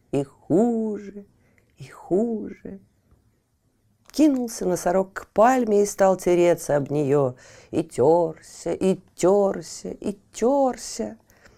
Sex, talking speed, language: female, 100 wpm, Russian